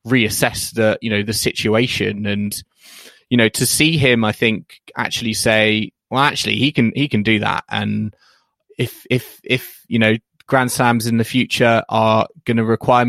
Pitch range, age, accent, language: 110-125 Hz, 20-39, British, English